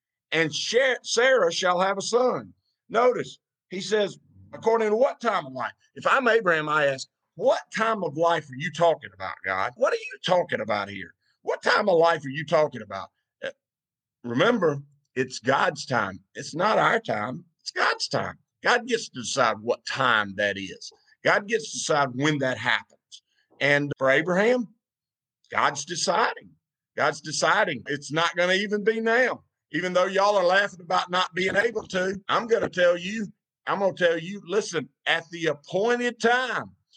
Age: 50-69